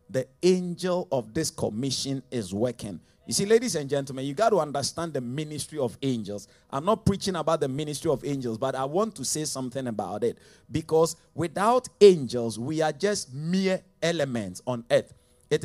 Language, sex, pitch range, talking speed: English, male, 135-185 Hz, 180 wpm